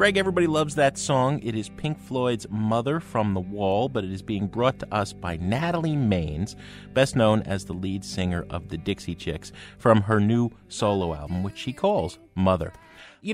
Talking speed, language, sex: 195 wpm, English, male